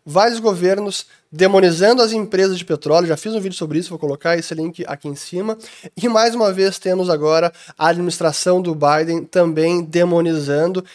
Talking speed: 175 wpm